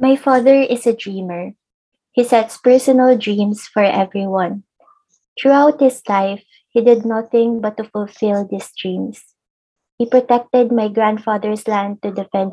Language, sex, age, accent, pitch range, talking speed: English, female, 20-39, Filipino, 205-235 Hz, 140 wpm